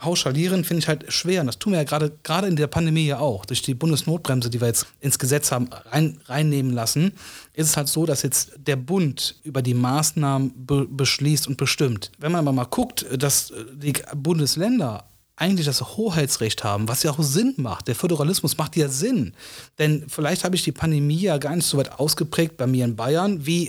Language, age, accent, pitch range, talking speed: German, 30-49, German, 130-170 Hz, 200 wpm